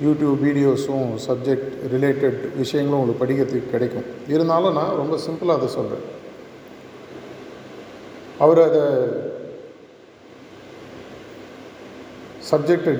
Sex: male